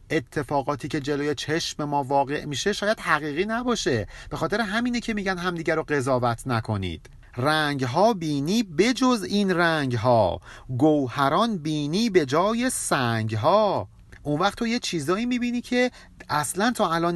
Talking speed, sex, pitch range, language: 135 wpm, male, 130-205 Hz, Persian